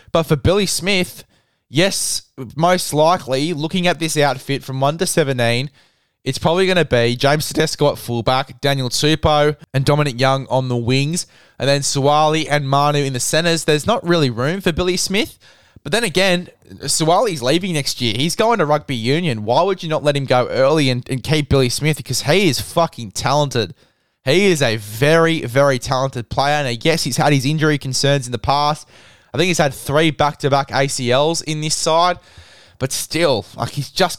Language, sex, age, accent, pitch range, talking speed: English, male, 20-39, Australian, 130-165 Hz, 190 wpm